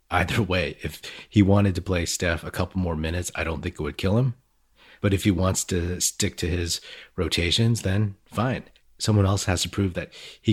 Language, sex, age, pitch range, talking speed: English, male, 30-49, 80-100 Hz, 210 wpm